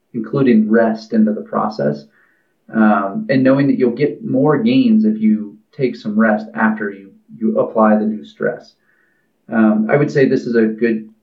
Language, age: English, 30-49